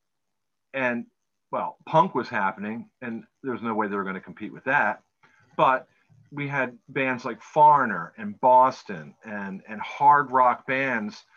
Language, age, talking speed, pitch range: English, 40-59, 160 wpm, 120-145 Hz